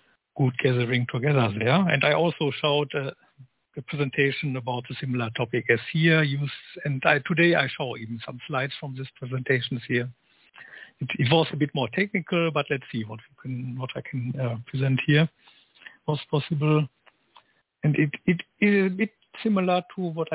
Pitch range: 130-160 Hz